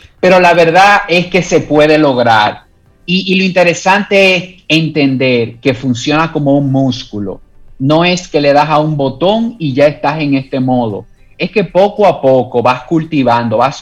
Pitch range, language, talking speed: 130-165 Hz, Spanish, 180 wpm